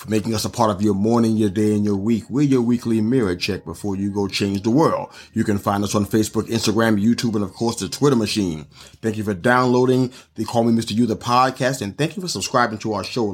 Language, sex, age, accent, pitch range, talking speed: English, male, 30-49, American, 105-125 Hz, 255 wpm